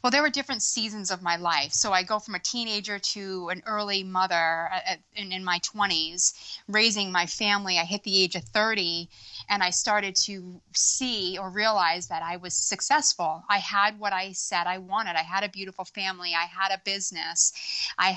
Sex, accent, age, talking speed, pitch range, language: female, American, 30-49, 195 wpm, 175-205 Hz, English